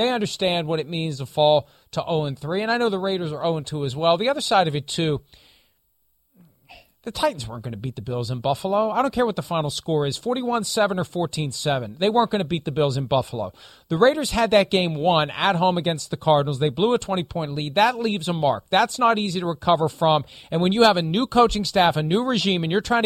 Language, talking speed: English, 245 wpm